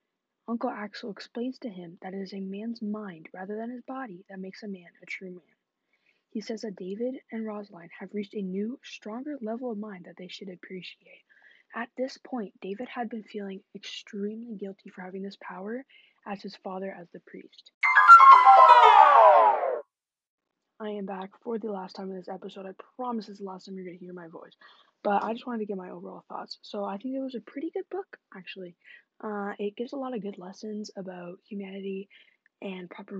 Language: English